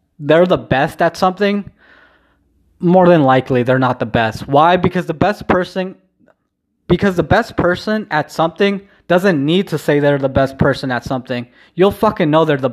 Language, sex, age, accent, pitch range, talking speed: English, male, 20-39, American, 125-160 Hz, 180 wpm